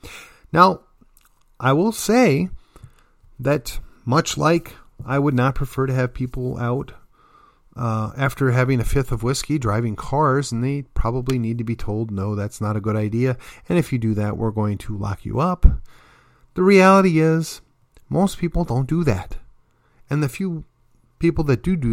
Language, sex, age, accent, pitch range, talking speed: English, male, 40-59, American, 115-150 Hz, 170 wpm